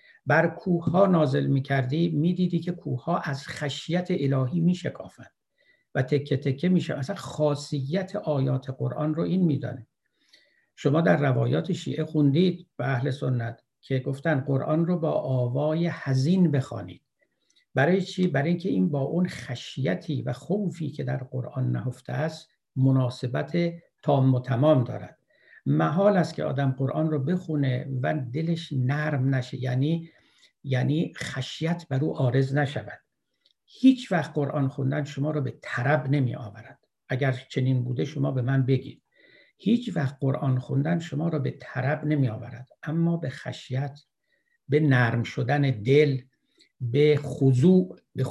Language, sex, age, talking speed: Persian, male, 60-79, 140 wpm